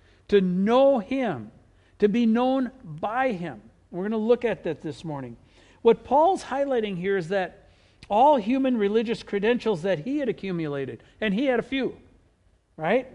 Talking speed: 165 wpm